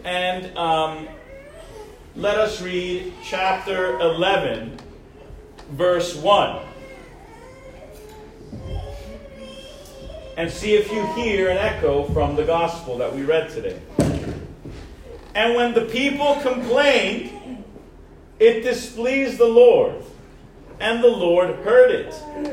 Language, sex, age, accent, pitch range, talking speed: English, male, 40-59, American, 180-255 Hz, 100 wpm